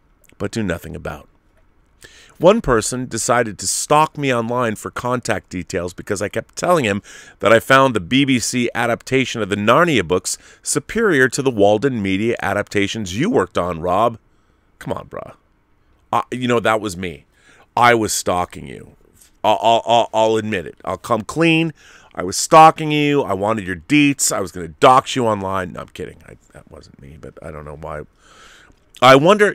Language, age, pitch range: English, 40-59, 95-135 Hz